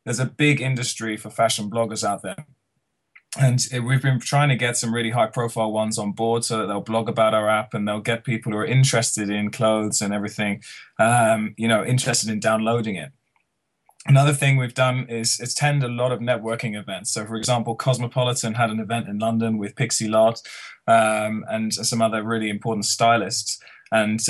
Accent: British